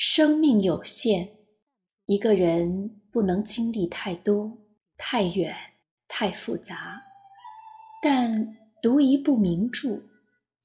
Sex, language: female, Chinese